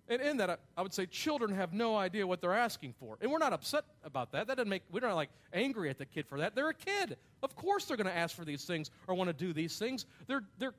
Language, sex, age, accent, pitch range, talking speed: English, male, 40-59, American, 165-225 Hz, 290 wpm